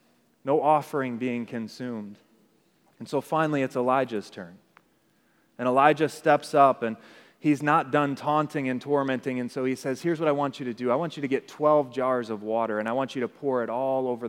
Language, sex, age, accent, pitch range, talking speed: English, male, 30-49, American, 125-150 Hz, 210 wpm